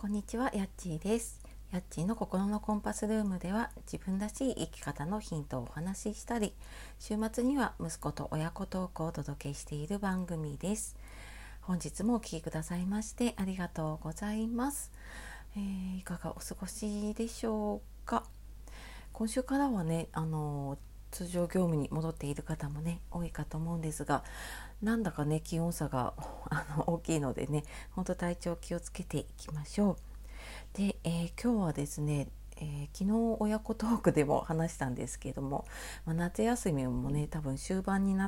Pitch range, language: 150-205 Hz, Japanese